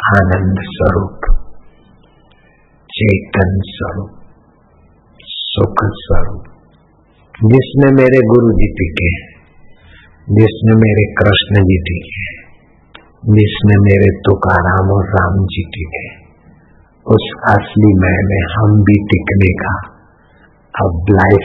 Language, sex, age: Hindi, male, 50-69